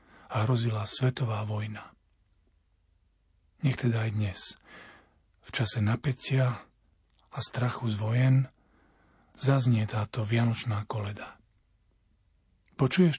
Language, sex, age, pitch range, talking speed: Slovak, male, 40-59, 105-135 Hz, 90 wpm